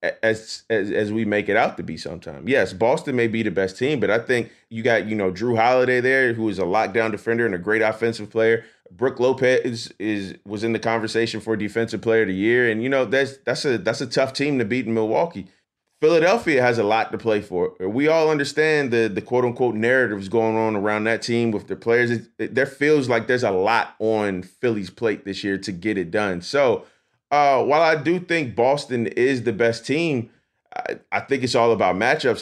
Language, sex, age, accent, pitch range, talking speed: English, male, 30-49, American, 110-125 Hz, 230 wpm